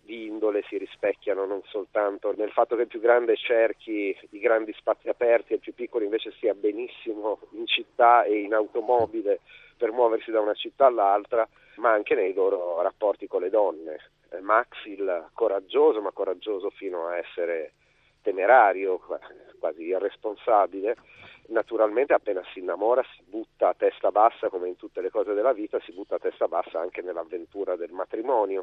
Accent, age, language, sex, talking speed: native, 40-59, Italian, male, 165 wpm